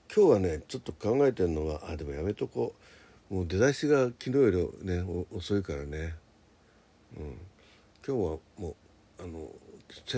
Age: 60-79